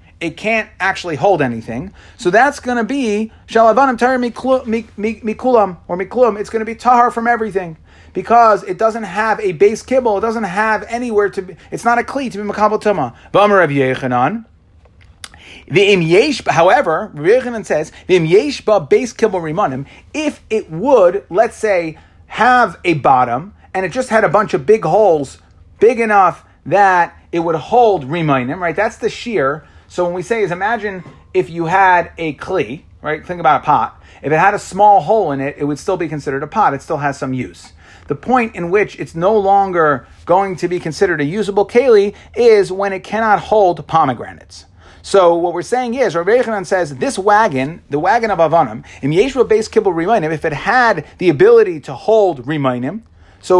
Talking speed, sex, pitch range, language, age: 165 wpm, male, 155-225 Hz, English, 30-49